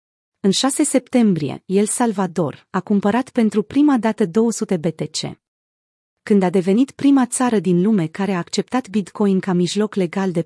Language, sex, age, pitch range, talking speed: Romanian, female, 30-49, 180-225 Hz, 155 wpm